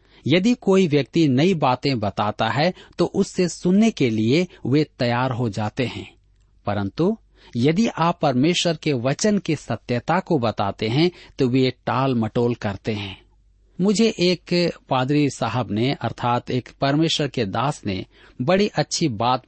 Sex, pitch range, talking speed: male, 110-170 Hz, 150 wpm